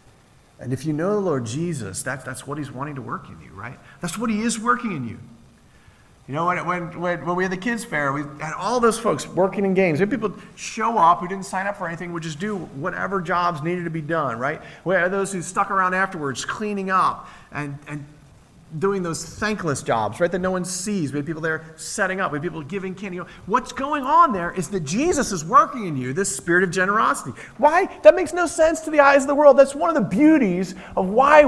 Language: English